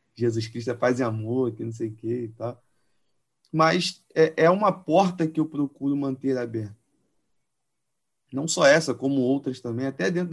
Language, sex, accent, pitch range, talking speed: Portuguese, male, Brazilian, 125-170 Hz, 155 wpm